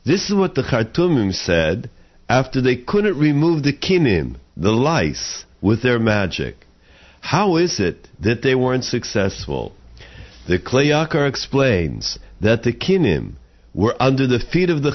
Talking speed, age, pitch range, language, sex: 145 wpm, 50-69, 100-150 Hz, English, male